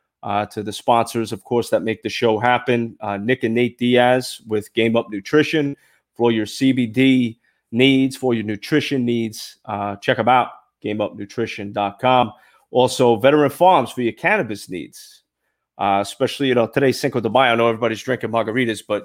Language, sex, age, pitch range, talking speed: English, male, 30-49, 110-130 Hz, 175 wpm